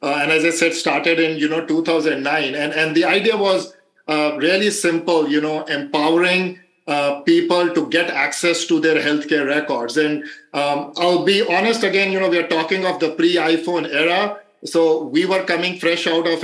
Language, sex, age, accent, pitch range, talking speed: English, male, 50-69, Indian, 155-175 Hz, 190 wpm